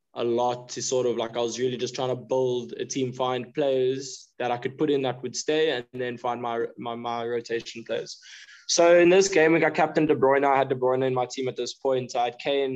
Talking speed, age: 260 wpm, 20-39